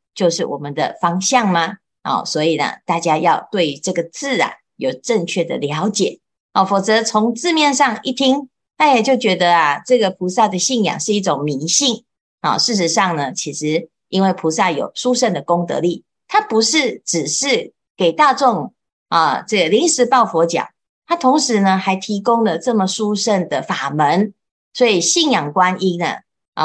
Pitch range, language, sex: 170-250 Hz, Chinese, female